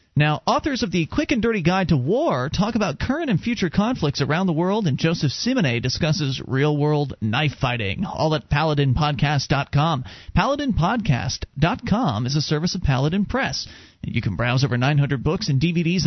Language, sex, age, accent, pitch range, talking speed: English, male, 40-59, American, 145-185 Hz, 165 wpm